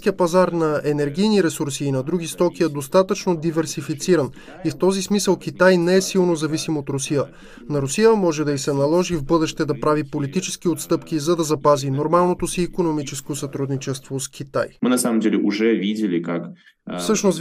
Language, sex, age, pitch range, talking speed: Bulgarian, male, 20-39, 150-180 Hz, 160 wpm